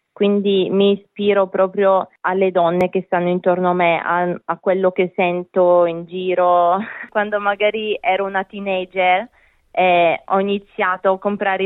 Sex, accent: female, native